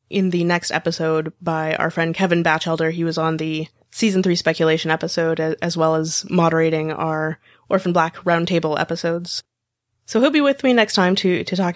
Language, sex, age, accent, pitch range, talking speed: English, female, 20-39, American, 160-215 Hz, 185 wpm